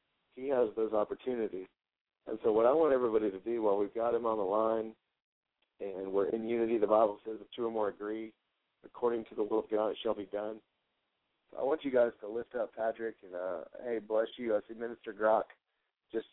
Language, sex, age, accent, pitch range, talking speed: English, male, 40-59, American, 110-120 Hz, 225 wpm